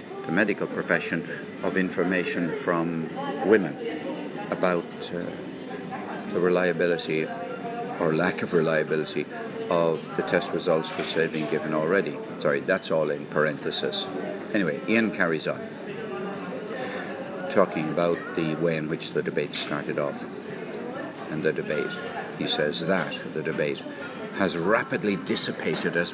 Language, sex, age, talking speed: English, male, 60-79, 125 wpm